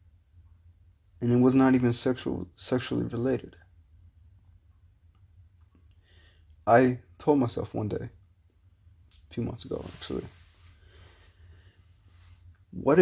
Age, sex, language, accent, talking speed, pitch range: 20-39, male, English, American, 85 wpm, 90-110 Hz